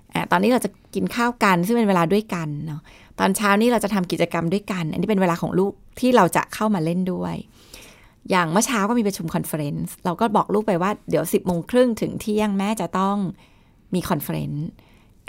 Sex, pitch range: female, 165-210 Hz